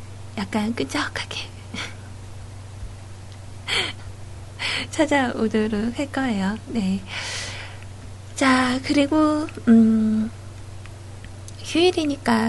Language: Korean